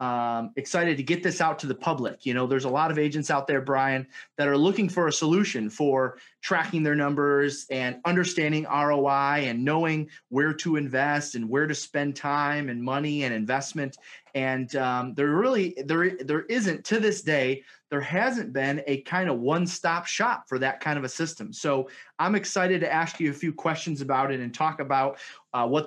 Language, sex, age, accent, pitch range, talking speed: English, male, 30-49, American, 140-180 Hz, 200 wpm